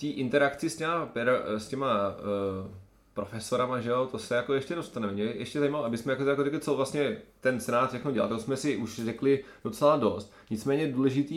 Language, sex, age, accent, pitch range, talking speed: Czech, male, 20-39, native, 110-135 Hz, 180 wpm